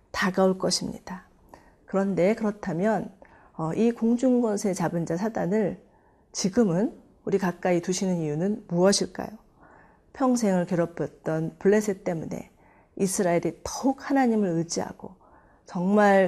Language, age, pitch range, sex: Korean, 40-59, 175-230 Hz, female